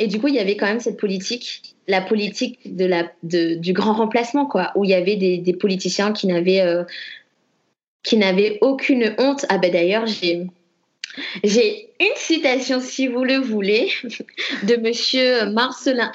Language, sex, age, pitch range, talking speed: French, female, 20-39, 185-235 Hz, 175 wpm